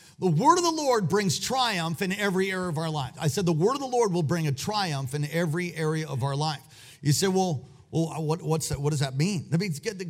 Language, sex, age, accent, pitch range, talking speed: English, male, 40-59, American, 145-200 Hz, 240 wpm